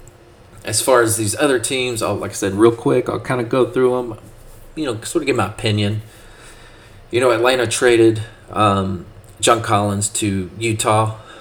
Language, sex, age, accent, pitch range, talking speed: English, male, 30-49, American, 100-115 Hz, 180 wpm